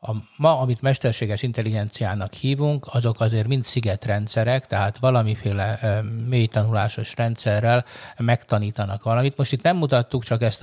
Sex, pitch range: male, 105-125 Hz